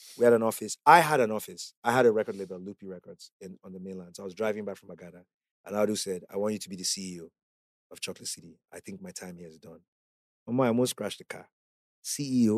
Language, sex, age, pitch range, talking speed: English, male, 30-49, 95-120 Hz, 250 wpm